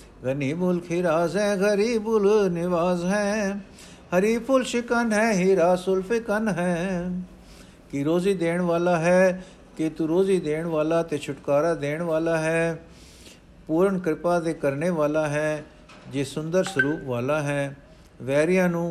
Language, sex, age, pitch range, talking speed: Punjabi, male, 60-79, 150-190 Hz, 130 wpm